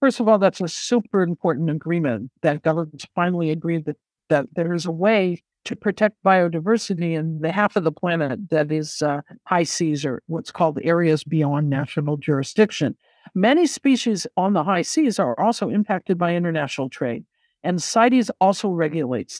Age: 60-79